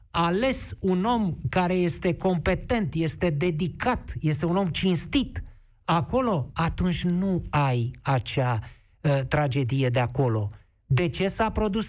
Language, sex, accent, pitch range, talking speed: Romanian, male, native, 130-205 Hz, 125 wpm